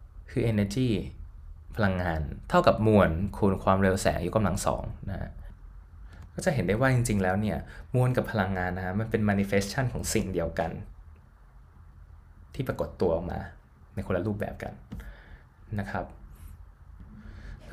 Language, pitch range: Thai, 85-115 Hz